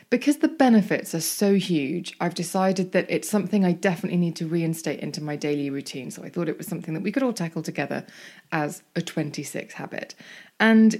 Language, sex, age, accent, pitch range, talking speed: English, female, 20-39, British, 165-220 Hz, 200 wpm